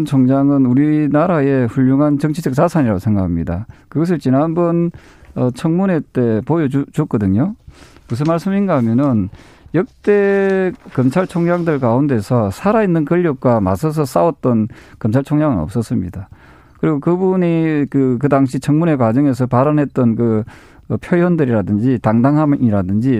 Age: 40-59